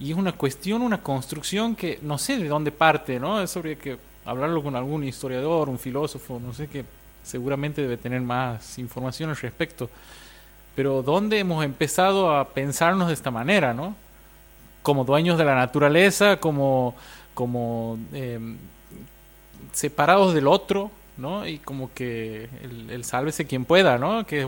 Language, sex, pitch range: Spanish, male, 125-160 Hz